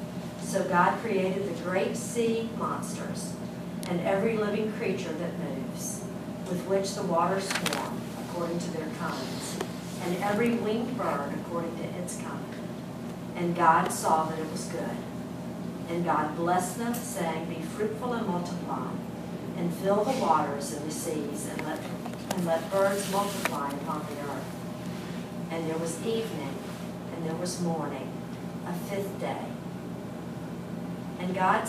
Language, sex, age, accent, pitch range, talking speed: English, female, 50-69, American, 170-205 Hz, 140 wpm